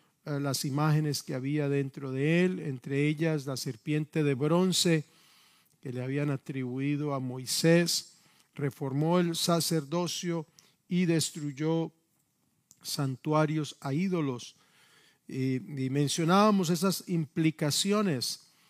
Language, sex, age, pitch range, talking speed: Spanish, male, 50-69, 140-175 Hz, 100 wpm